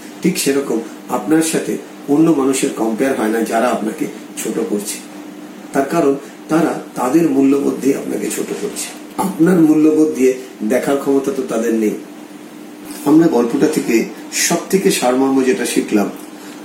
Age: 40-59